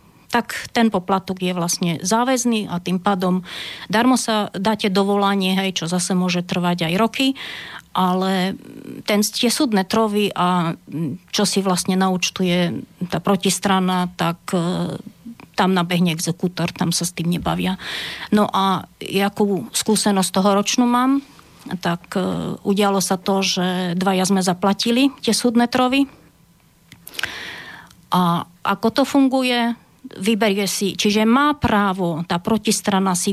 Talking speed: 130 wpm